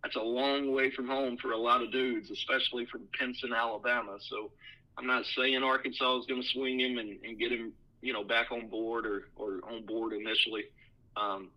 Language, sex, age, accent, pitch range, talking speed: English, male, 40-59, American, 115-140 Hz, 205 wpm